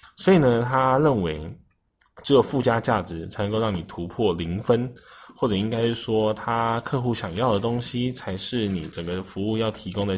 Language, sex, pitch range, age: Chinese, male, 95-115 Hz, 10-29